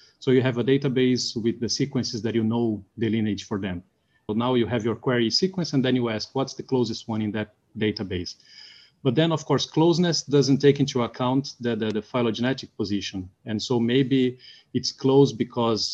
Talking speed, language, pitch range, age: 200 wpm, English, 105-130 Hz, 30-49